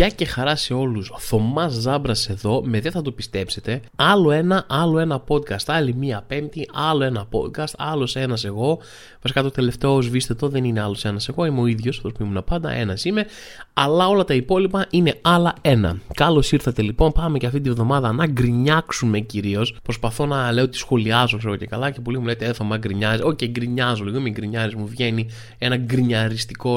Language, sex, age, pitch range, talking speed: Greek, male, 20-39, 110-145 Hz, 205 wpm